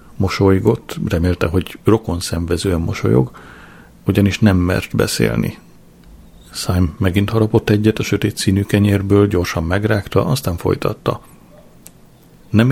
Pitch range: 90-115 Hz